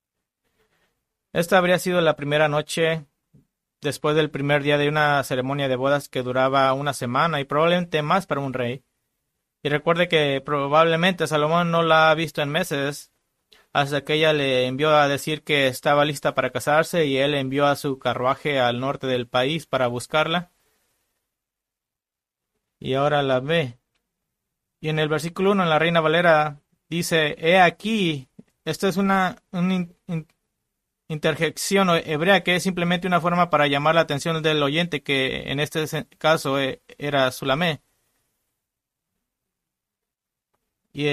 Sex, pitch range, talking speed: male, 140-165 Hz, 145 wpm